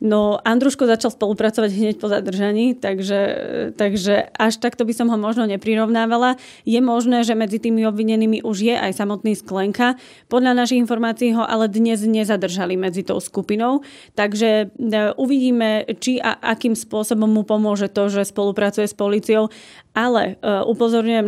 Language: Slovak